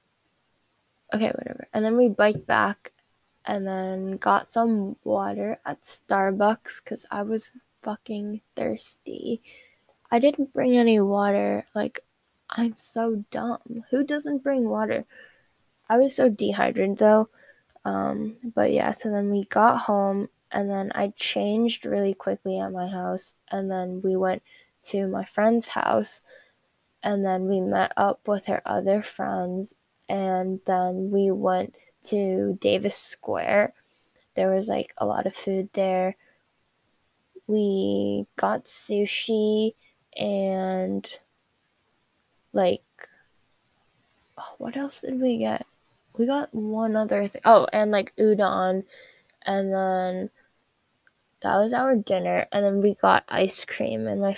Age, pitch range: 10-29, 190-225 Hz